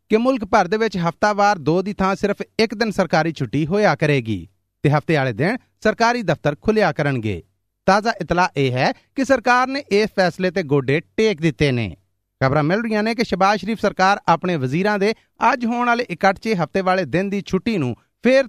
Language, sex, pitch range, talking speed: Punjabi, male, 150-225 Hz, 195 wpm